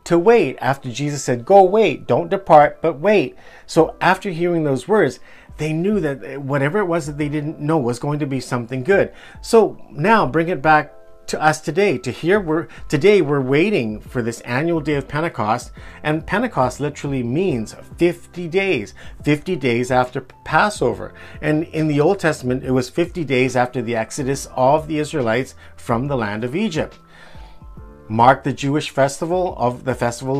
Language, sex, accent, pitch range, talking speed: English, male, American, 125-170 Hz, 175 wpm